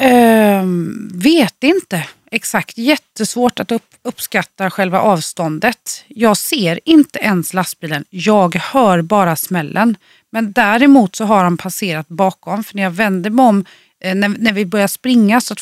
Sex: female